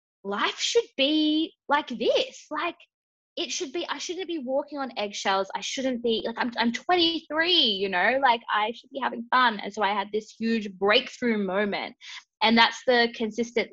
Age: 20-39